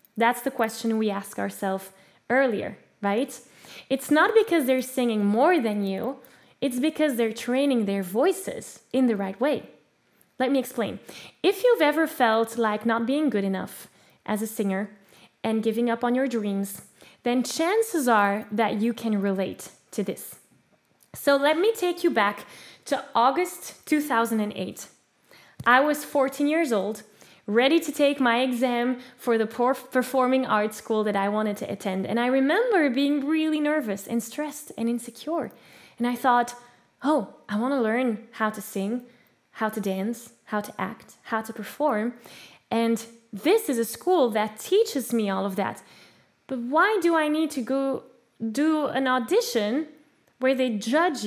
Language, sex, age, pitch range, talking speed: English, female, 10-29, 215-280 Hz, 165 wpm